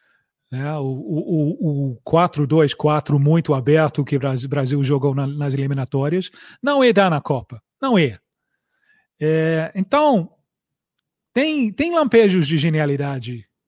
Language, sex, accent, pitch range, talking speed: Portuguese, male, Brazilian, 150-200 Hz, 125 wpm